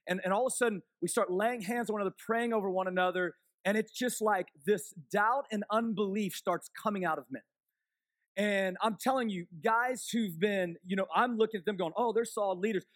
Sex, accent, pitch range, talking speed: male, American, 185-245 Hz, 220 wpm